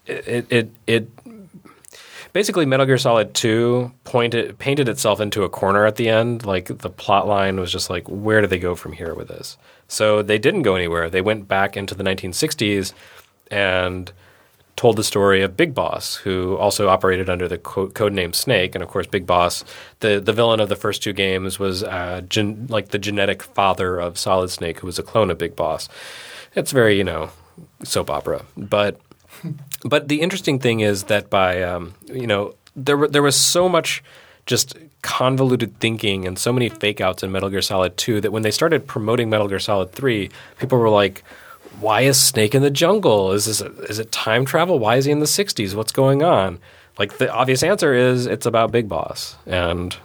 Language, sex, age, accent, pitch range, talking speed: English, male, 30-49, American, 95-125 Hz, 205 wpm